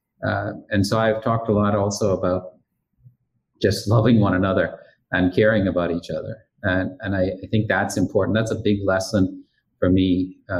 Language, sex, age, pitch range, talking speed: English, male, 40-59, 95-115 Hz, 180 wpm